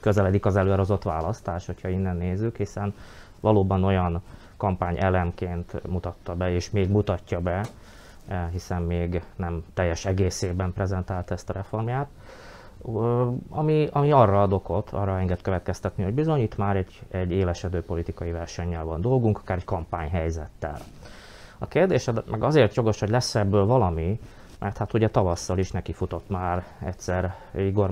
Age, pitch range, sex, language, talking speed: 20-39, 90-105 Hz, male, Hungarian, 145 wpm